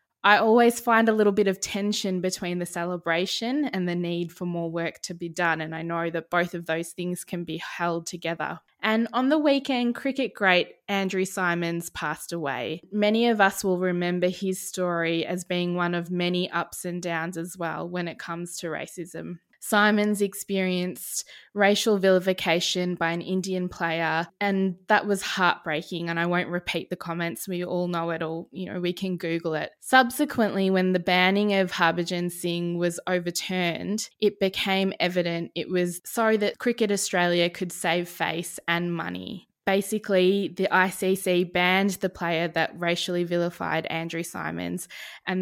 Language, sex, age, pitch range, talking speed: English, female, 20-39, 170-195 Hz, 170 wpm